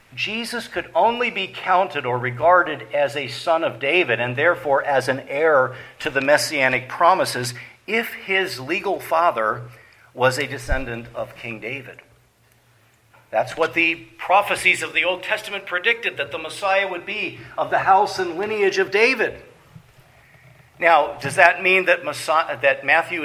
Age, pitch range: 50-69, 130-180 Hz